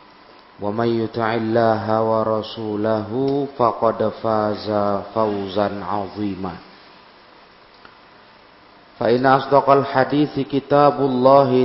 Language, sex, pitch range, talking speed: Indonesian, male, 110-135 Hz, 65 wpm